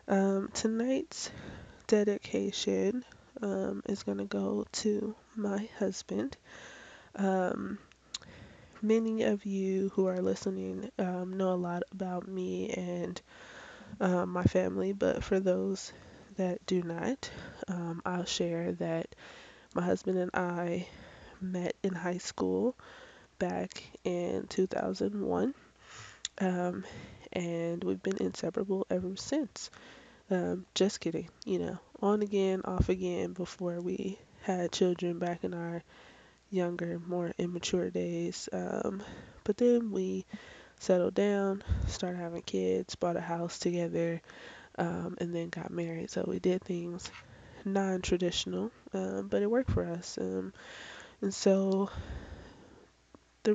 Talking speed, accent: 120 wpm, American